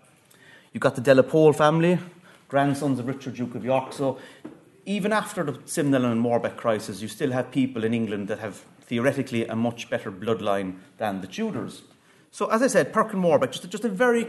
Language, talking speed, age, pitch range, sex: English, 200 wpm, 30-49, 115-150 Hz, male